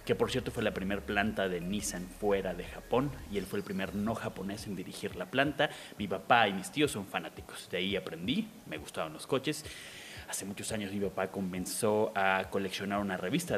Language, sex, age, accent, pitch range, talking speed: Spanish, male, 30-49, Mexican, 95-130 Hz, 210 wpm